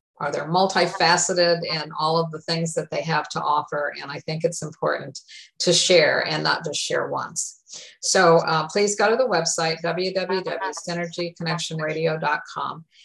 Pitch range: 160-185 Hz